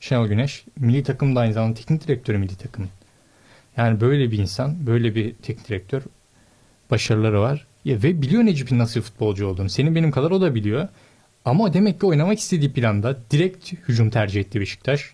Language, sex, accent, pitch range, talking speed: Turkish, male, native, 115-150 Hz, 175 wpm